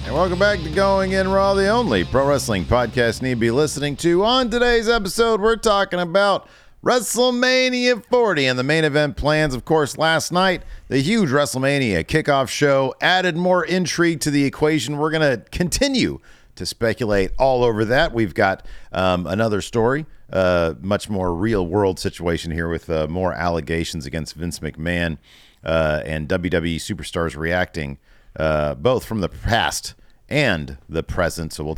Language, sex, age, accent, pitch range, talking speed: English, male, 40-59, American, 95-155 Hz, 170 wpm